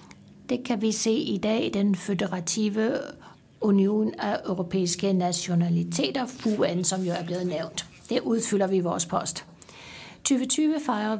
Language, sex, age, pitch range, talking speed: Danish, female, 60-79, 195-250 Hz, 145 wpm